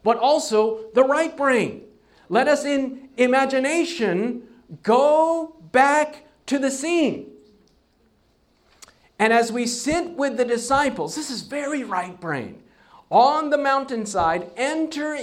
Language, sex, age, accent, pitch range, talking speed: English, male, 50-69, American, 185-260 Hz, 120 wpm